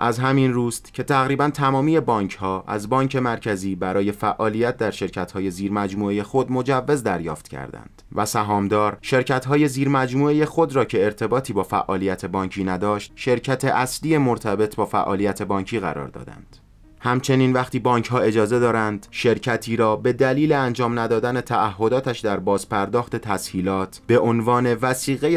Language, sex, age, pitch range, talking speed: Persian, male, 30-49, 105-130 Hz, 135 wpm